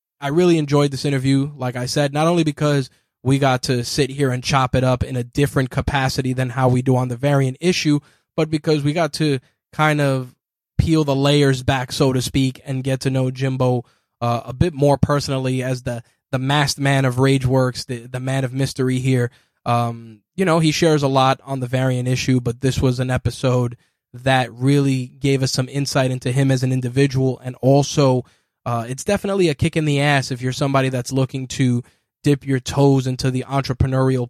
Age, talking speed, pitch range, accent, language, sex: 20-39, 205 wpm, 125-140 Hz, American, English, male